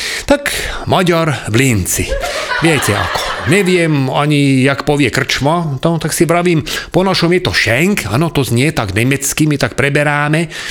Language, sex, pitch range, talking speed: English, male, 130-175 Hz, 155 wpm